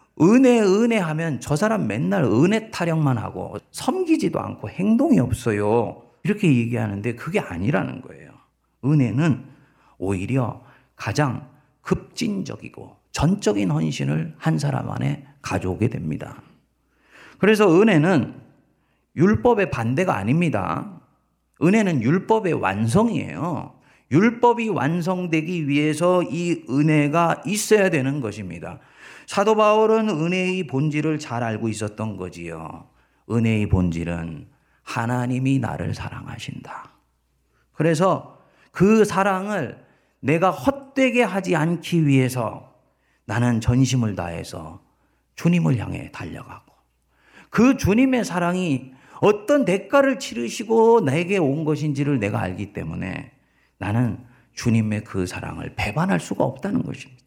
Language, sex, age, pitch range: Korean, male, 40-59, 115-185 Hz